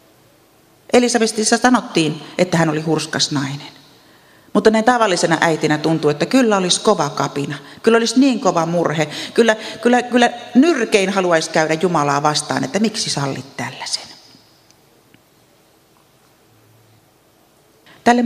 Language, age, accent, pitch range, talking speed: Finnish, 40-59, native, 160-225 Hz, 115 wpm